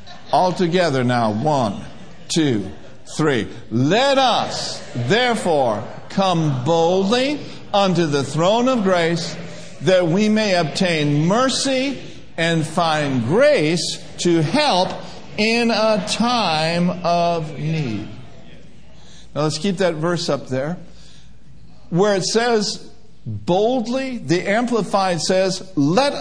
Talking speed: 105 wpm